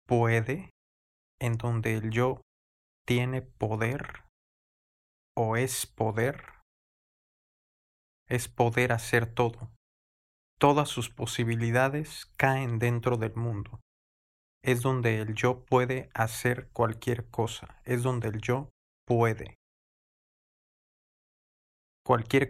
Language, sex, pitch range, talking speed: Spanish, male, 110-125 Hz, 95 wpm